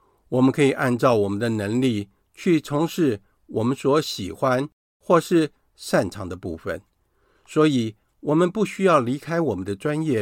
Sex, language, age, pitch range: male, Chinese, 50-69, 95-140 Hz